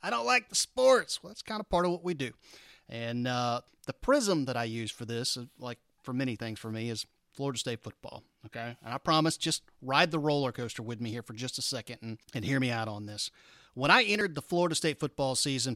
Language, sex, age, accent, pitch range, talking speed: English, male, 30-49, American, 120-160 Hz, 245 wpm